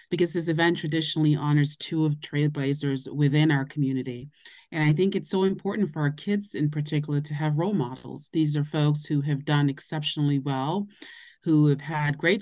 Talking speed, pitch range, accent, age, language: 185 wpm, 140-165 Hz, American, 30-49, English